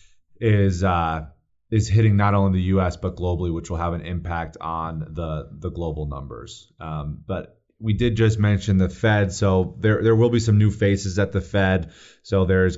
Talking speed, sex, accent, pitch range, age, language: 195 wpm, male, American, 85-100 Hz, 30-49, English